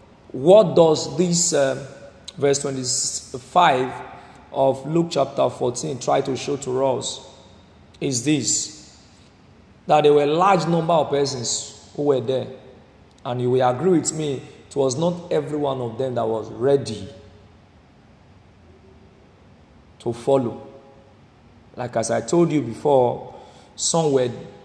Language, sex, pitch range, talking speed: English, male, 115-155 Hz, 130 wpm